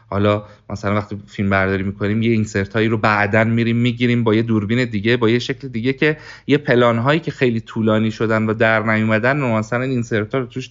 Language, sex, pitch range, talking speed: Persian, male, 110-145 Hz, 205 wpm